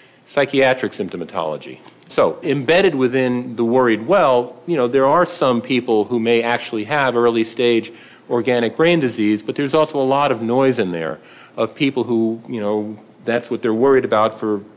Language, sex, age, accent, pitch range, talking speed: English, male, 40-59, American, 115-140 Hz, 175 wpm